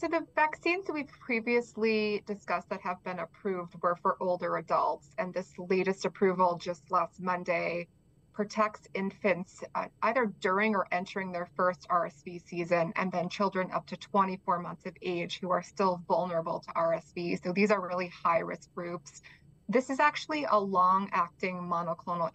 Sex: female